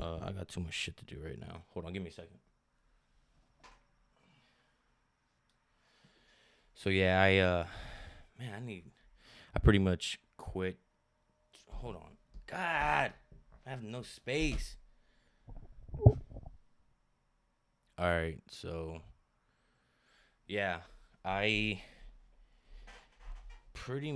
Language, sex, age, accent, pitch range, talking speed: English, male, 20-39, American, 85-100 Hz, 100 wpm